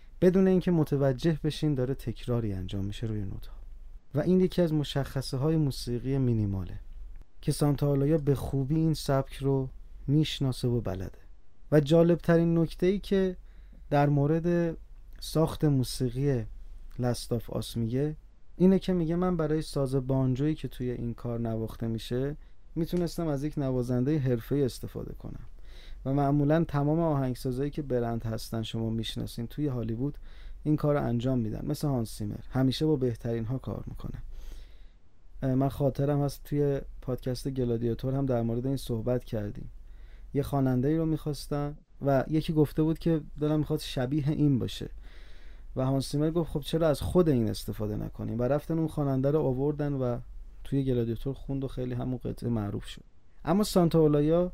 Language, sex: Persian, male